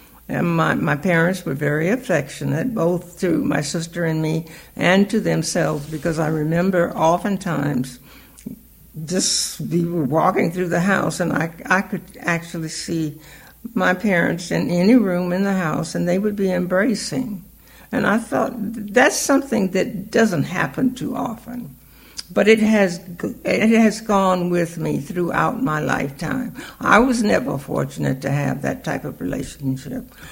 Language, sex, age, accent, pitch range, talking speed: English, female, 60-79, American, 165-210 Hz, 150 wpm